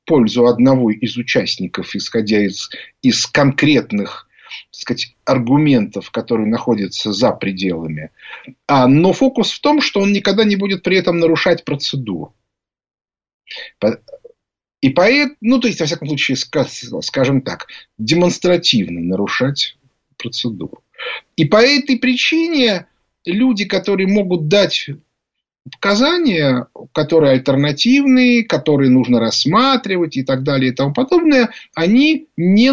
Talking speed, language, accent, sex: 115 wpm, Russian, native, male